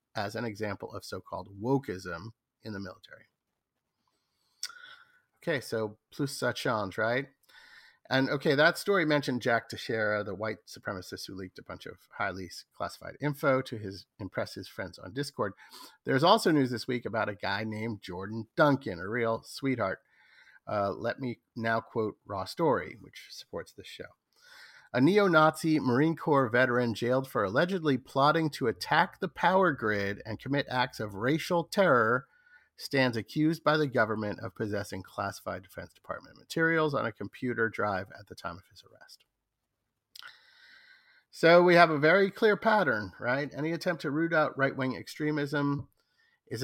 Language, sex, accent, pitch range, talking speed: English, male, American, 110-155 Hz, 155 wpm